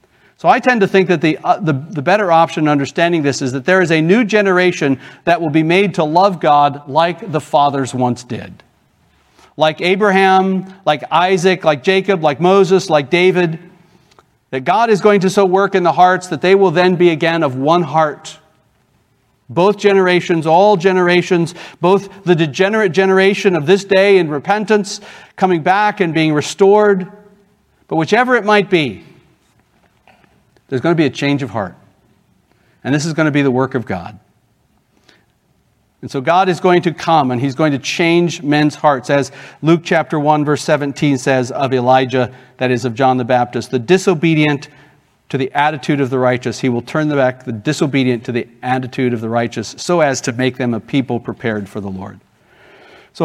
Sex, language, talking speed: male, English, 185 wpm